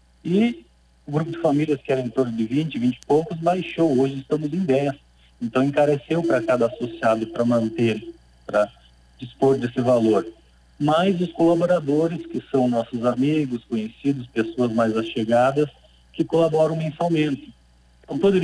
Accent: Brazilian